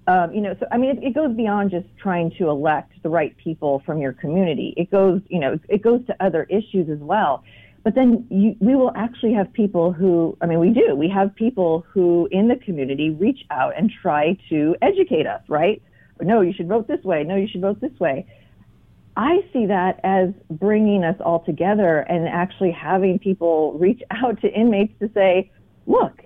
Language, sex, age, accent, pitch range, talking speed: English, female, 40-59, American, 165-210 Hz, 200 wpm